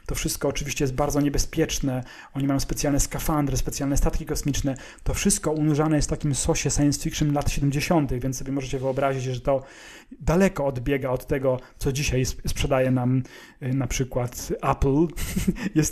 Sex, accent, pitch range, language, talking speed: male, native, 140-175 Hz, Polish, 160 wpm